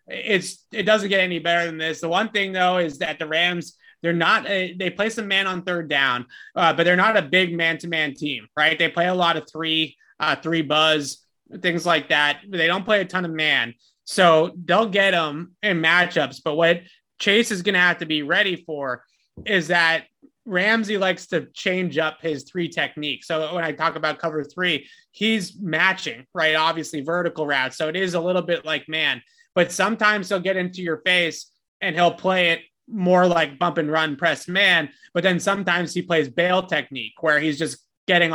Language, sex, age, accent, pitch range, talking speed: English, male, 30-49, American, 155-185 Hz, 205 wpm